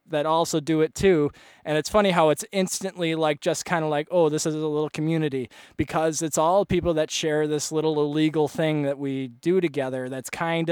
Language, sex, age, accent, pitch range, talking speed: English, male, 20-39, American, 145-170 Hz, 215 wpm